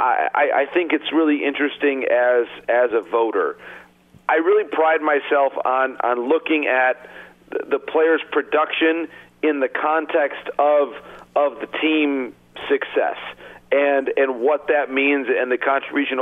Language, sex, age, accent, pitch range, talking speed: English, male, 40-59, American, 125-160 Hz, 140 wpm